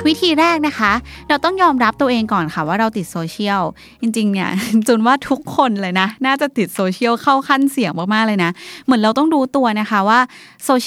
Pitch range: 180-245 Hz